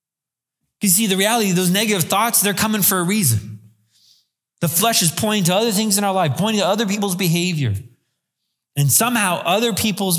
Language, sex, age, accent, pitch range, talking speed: English, male, 30-49, American, 120-150 Hz, 185 wpm